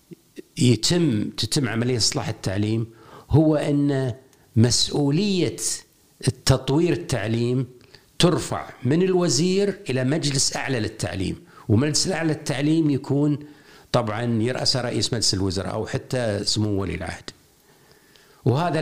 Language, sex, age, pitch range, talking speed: Arabic, male, 50-69, 110-145 Hz, 100 wpm